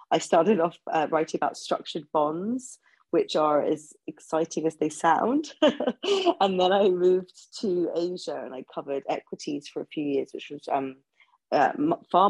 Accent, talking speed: British, 165 wpm